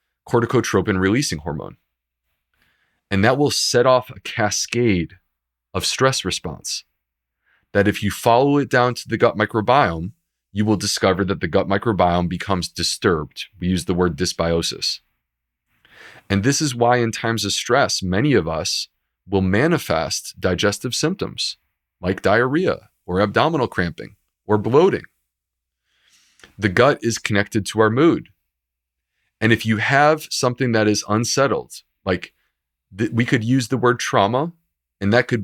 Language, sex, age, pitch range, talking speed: English, male, 30-49, 90-120 Hz, 140 wpm